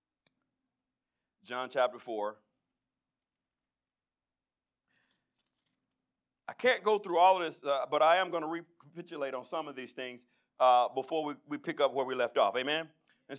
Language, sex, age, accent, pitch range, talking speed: English, male, 50-69, American, 145-195 Hz, 150 wpm